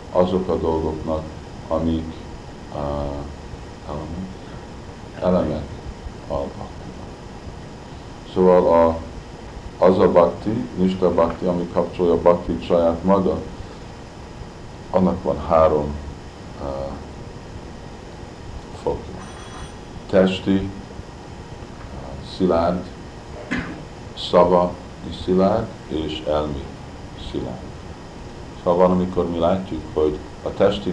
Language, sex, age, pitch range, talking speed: Hungarian, male, 50-69, 75-95 Hz, 80 wpm